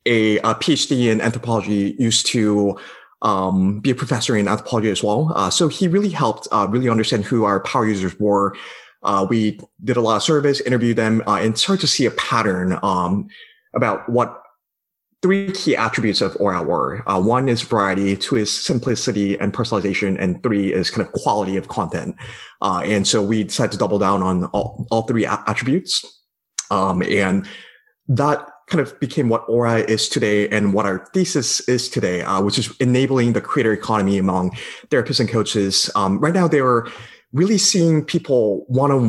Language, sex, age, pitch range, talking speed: English, male, 30-49, 105-135 Hz, 185 wpm